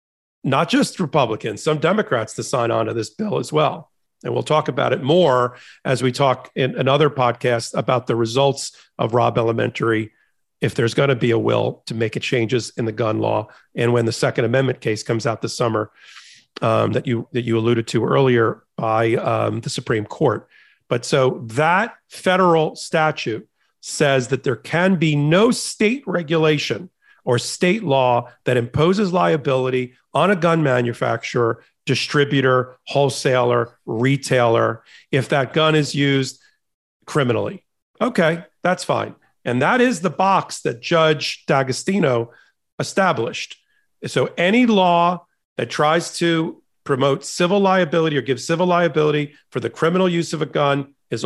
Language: English